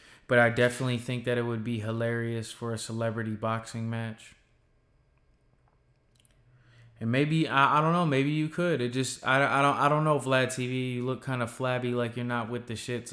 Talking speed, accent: 220 wpm, American